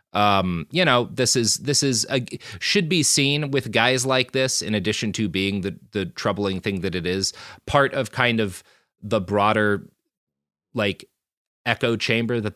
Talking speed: 165 wpm